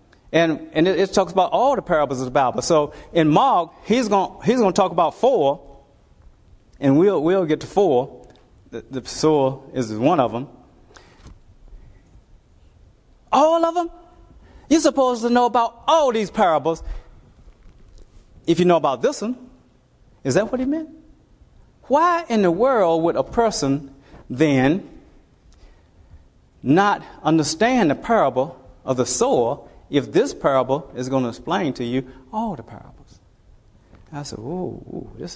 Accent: American